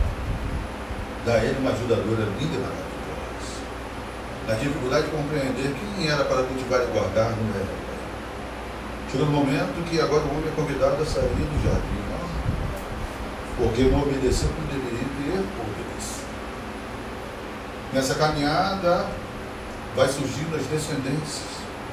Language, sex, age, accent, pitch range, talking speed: Portuguese, male, 40-59, Brazilian, 120-155 Hz, 125 wpm